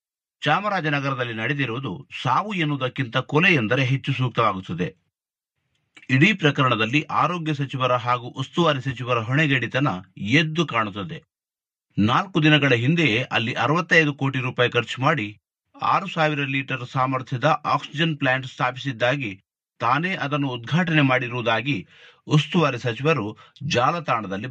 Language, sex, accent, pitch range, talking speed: Kannada, male, native, 120-150 Hz, 100 wpm